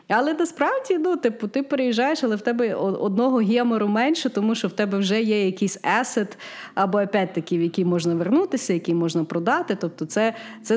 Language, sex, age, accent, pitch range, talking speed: Ukrainian, female, 30-49, native, 185-250 Hz, 165 wpm